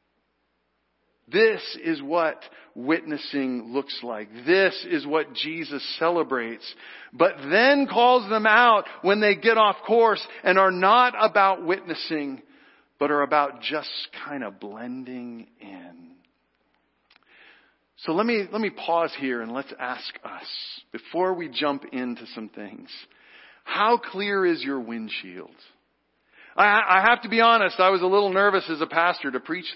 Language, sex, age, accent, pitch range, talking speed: English, male, 50-69, American, 145-225 Hz, 145 wpm